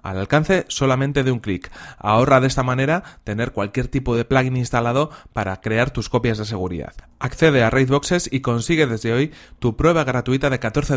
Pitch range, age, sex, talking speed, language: 110-135 Hz, 30-49, male, 185 wpm, Spanish